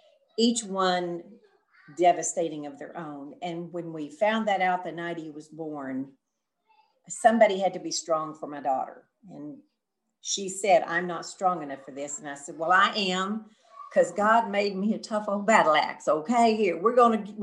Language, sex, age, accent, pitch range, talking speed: English, female, 50-69, American, 165-210 Hz, 185 wpm